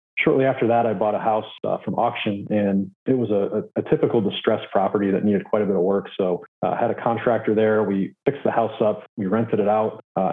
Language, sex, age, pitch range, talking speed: English, male, 30-49, 105-120 Hz, 250 wpm